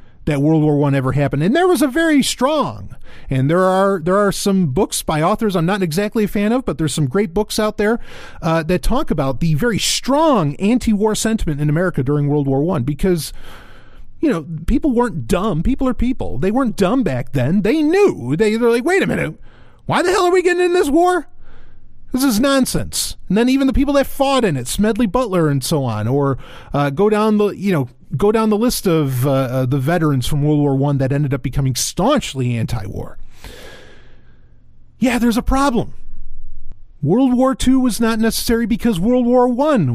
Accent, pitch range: American, 140-235 Hz